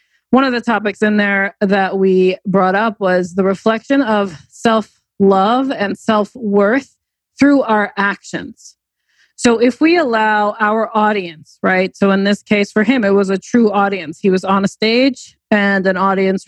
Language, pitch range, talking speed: English, 190-220 Hz, 170 wpm